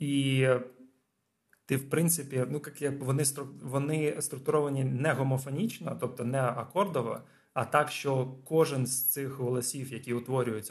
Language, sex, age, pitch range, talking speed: Ukrainian, male, 20-39, 120-145 Hz, 135 wpm